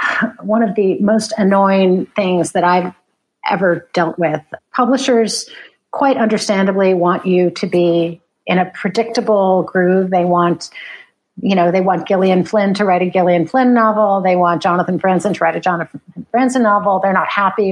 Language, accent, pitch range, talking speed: English, American, 180-225 Hz, 165 wpm